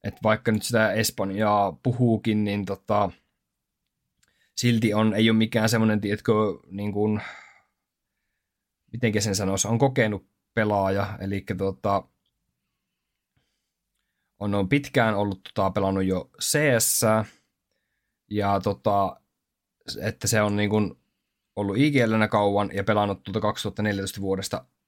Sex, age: male, 20-39